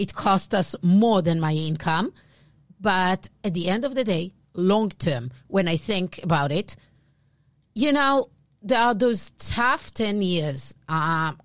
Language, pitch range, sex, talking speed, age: English, 160-205 Hz, female, 155 wpm, 40-59